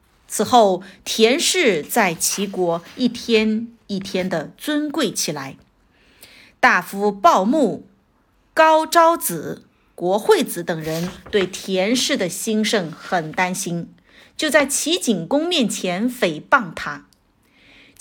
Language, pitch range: Chinese, 190-255 Hz